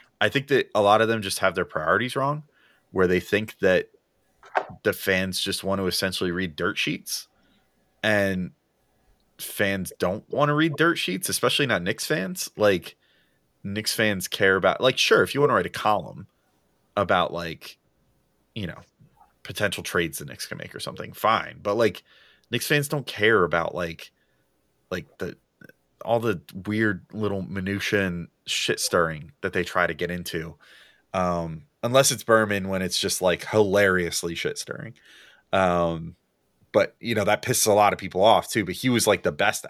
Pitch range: 90-115 Hz